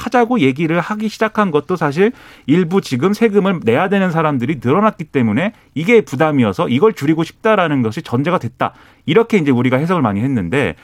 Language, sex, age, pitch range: Korean, male, 40-59, 125-195 Hz